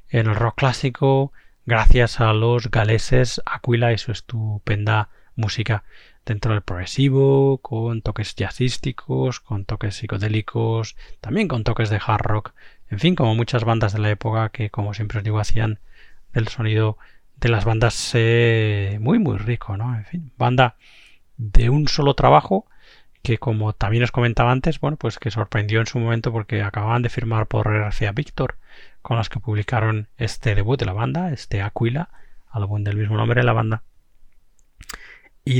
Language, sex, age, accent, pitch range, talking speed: Spanish, male, 20-39, Spanish, 105-120 Hz, 165 wpm